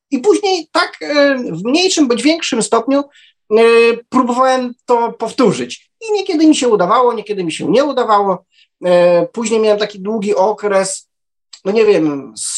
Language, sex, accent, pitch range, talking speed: Polish, male, native, 175-245 Hz, 145 wpm